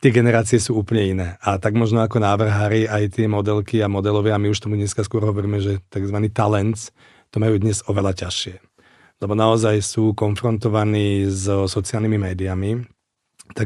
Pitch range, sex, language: 105-120 Hz, male, Czech